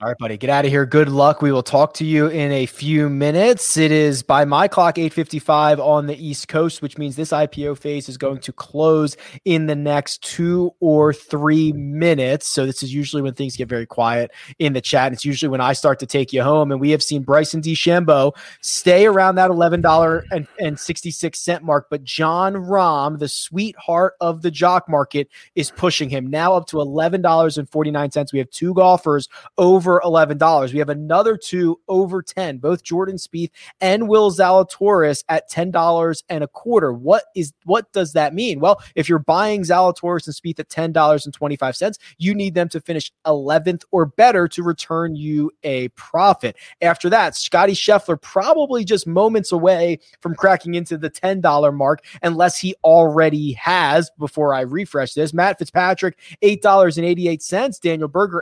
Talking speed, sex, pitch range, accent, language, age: 180 wpm, male, 145-180 Hz, American, English, 20-39